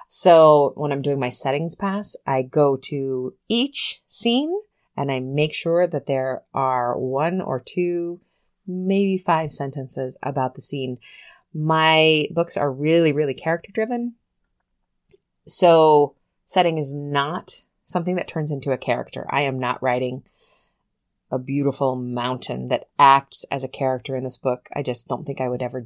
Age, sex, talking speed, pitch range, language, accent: 30-49, female, 155 wpm, 130-175 Hz, English, American